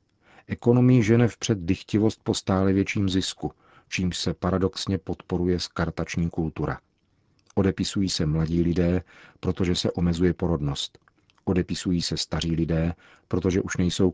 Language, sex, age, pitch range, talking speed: Czech, male, 40-59, 80-95 Hz, 125 wpm